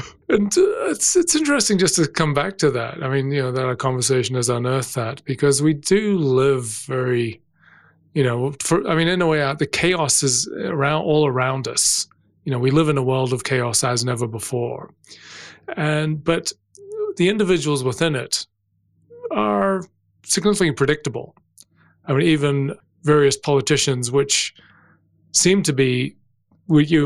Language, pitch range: English, 130-150 Hz